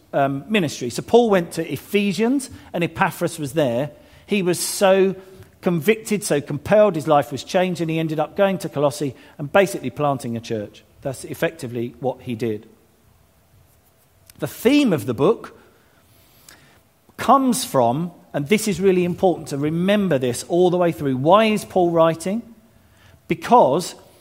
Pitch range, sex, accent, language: 130-185 Hz, male, British, English